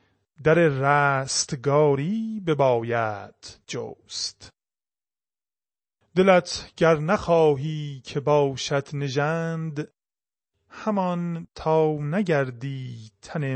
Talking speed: 65 wpm